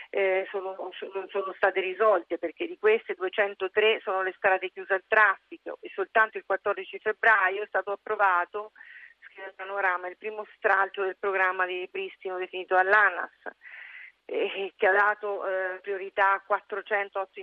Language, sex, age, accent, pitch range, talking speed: Italian, female, 40-59, native, 175-210 Hz, 145 wpm